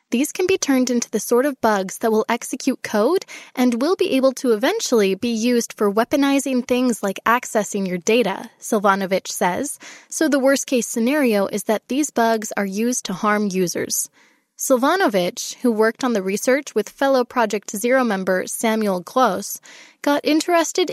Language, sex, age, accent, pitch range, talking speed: English, female, 20-39, American, 220-285 Hz, 165 wpm